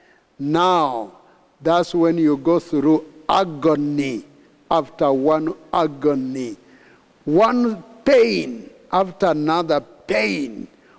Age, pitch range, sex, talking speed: 60-79, 155-225 Hz, male, 80 wpm